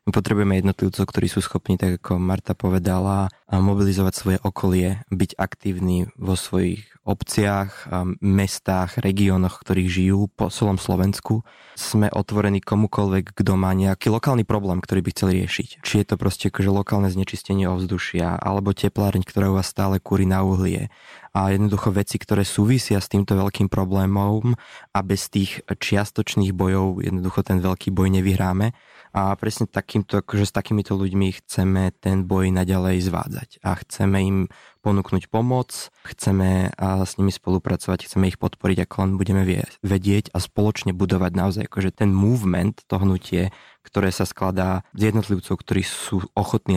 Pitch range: 95-100 Hz